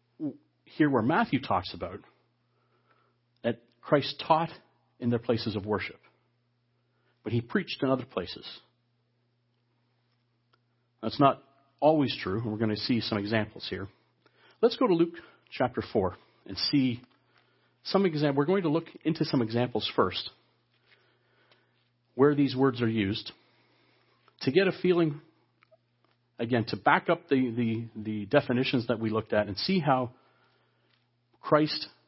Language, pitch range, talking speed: English, 120-140 Hz, 135 wpm